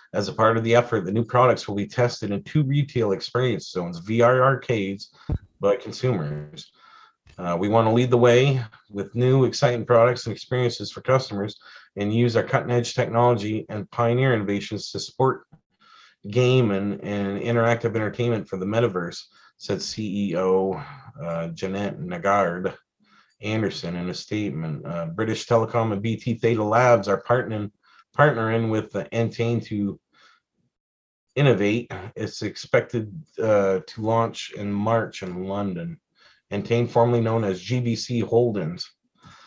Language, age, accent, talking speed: English, 40-59, American, 145 wpm